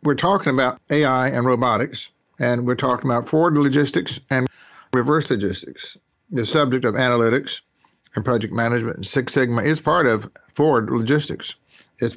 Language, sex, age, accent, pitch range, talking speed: English, male, 50-69, American, 115-145 Hz, 155 wpm